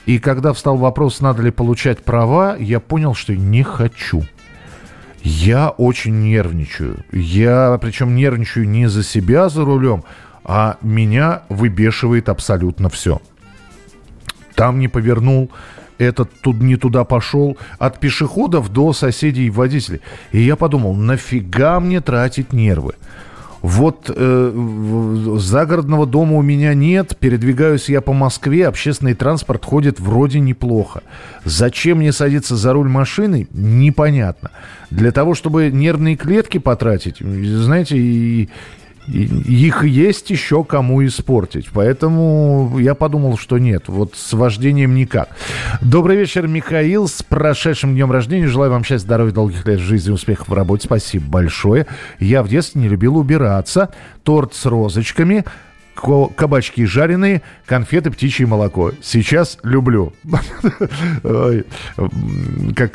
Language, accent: Russian, native